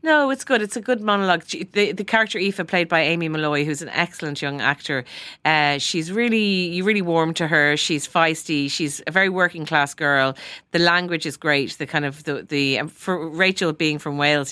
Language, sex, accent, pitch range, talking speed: English, female, Irish, 140-170 Hz, 210 wpm